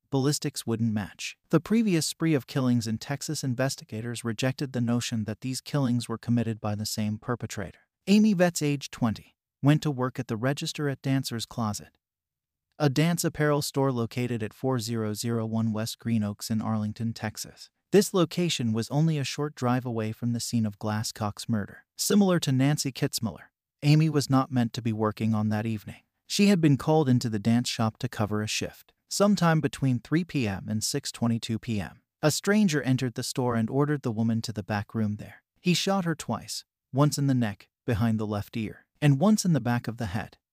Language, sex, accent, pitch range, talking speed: English, male, American, 110-145 Hz, 190 wpm